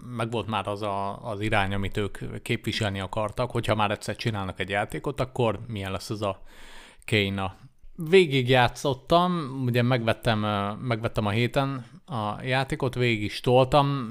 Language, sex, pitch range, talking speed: Hungarian, male, 105-125 Hz, 150 wpm